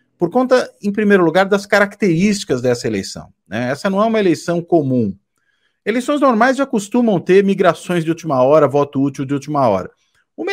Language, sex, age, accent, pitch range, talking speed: Portuguese, male, 40-59, Brazilian, 130-195 Hz, 175 wpm